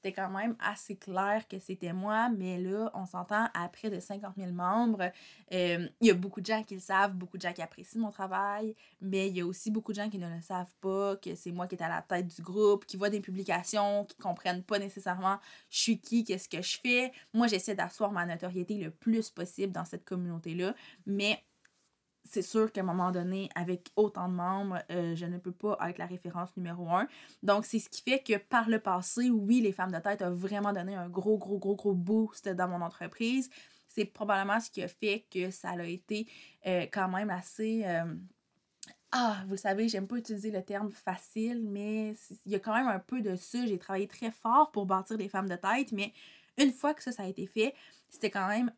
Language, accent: French, Canadian